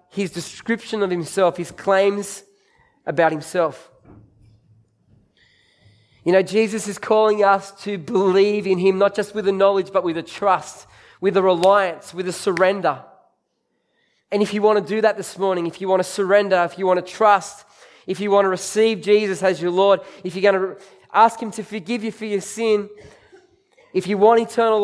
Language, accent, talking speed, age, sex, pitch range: English, Australian, 185 wpm, 20-39, male, 165-210 Hz